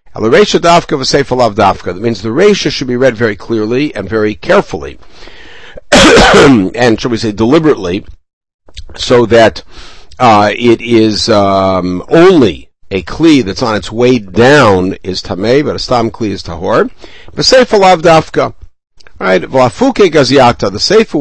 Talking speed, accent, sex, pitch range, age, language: 145 wpm, American, male, 100-135 Hz, 60-79, English